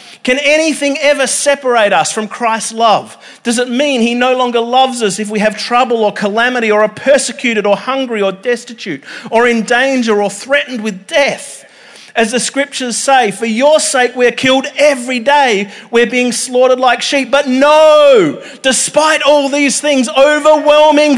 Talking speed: 165 wpm